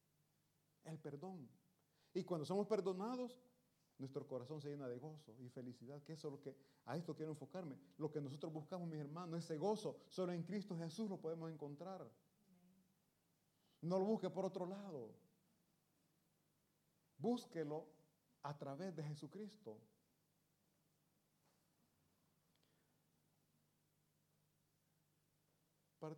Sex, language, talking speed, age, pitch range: male, Italian, 115 wpm, 40-59, 135-175 Hz